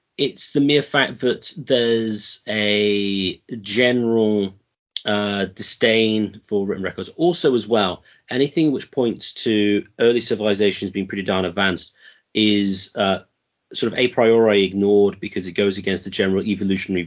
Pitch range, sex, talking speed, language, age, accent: 95-135 Hz, male, 140 wpm, English, 30-49, British